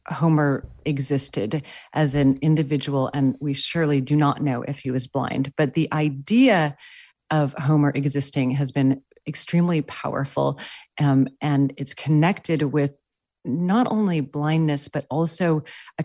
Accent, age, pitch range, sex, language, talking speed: American, 40-59, 135-155 Hz, female, English, 135 wpm